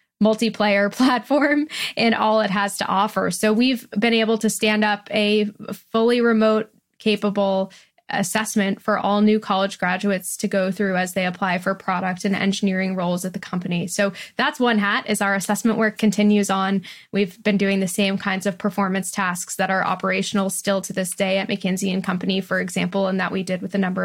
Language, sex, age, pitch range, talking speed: English, female, 10-29, 195-220 Hz, 195 wpm